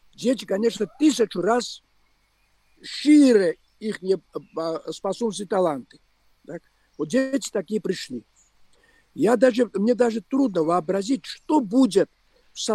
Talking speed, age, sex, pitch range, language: 110 wpm, 50-69, male, 190-255 Hz, Russian